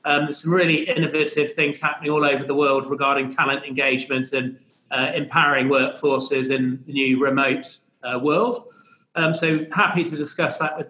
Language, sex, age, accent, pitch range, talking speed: English, male, 40-59, British, 145-175 Hz, 165 wpm